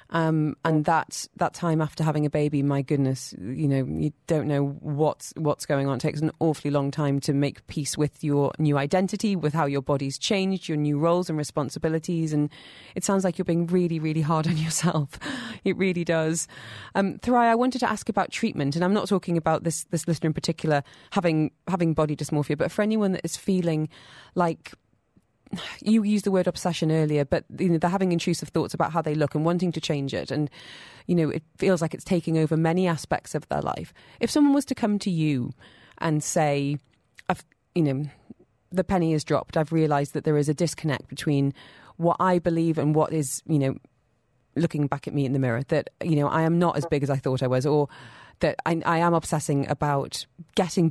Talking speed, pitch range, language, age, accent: 215 wpm, 145-175 Hz, English, 30-49, British